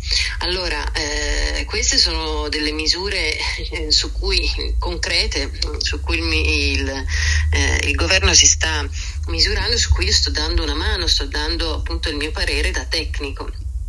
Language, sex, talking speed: English, female, 150 wpm